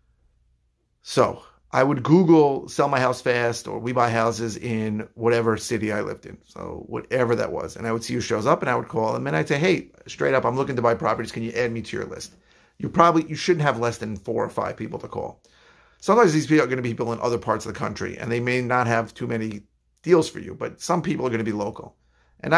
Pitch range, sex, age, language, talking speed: 110-130 Hz, male, 50-69, English, 265 wpm